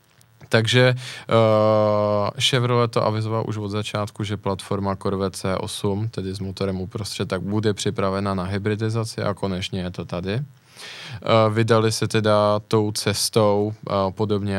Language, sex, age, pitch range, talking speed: Czech, male, 20-39, 95-110 Hz, 140 wpm